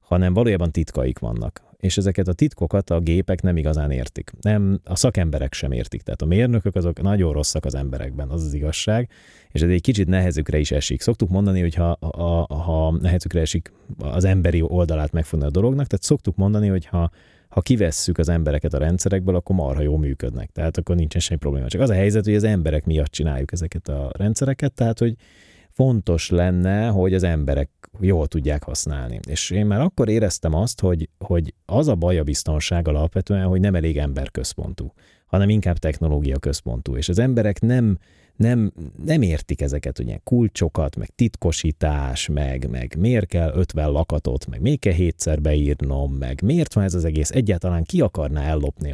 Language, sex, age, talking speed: Hungarian, male, 30-49, 180 wpm